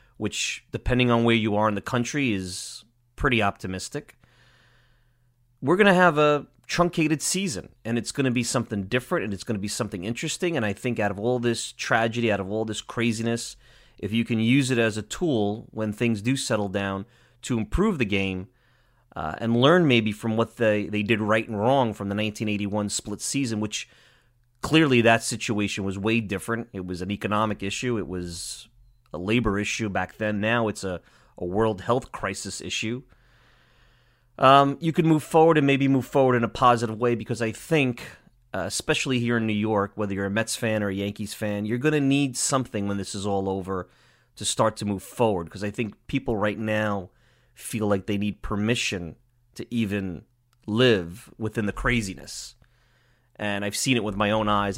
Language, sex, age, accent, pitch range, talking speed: English, male, 30-49, American, 105-120 Hz, 195 wpm